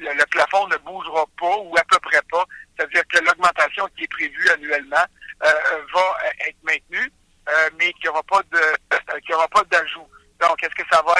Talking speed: 210 wpm